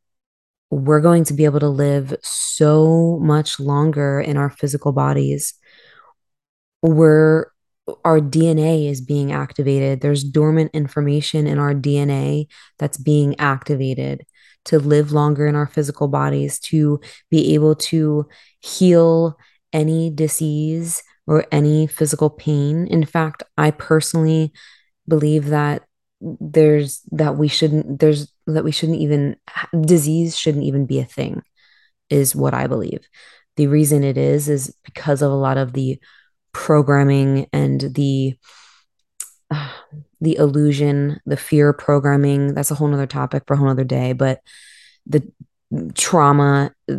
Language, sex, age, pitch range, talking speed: English, female, 20-39, 140-155 Hz, 135 wpm